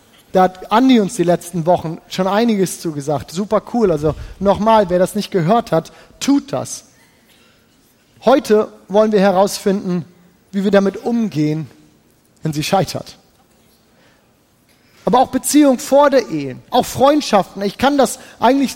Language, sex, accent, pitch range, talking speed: German, male, German, 185-240 Hz, 140 wpm